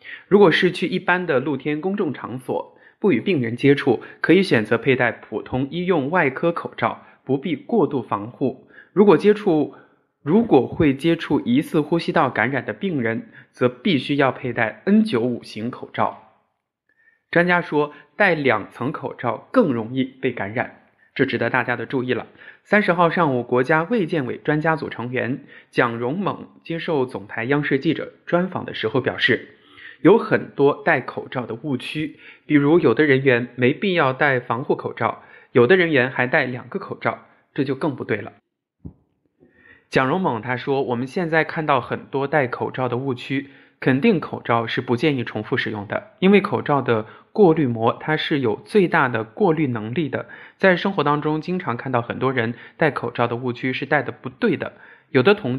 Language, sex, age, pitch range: Chinese, male, 20-39, 125-165 Hz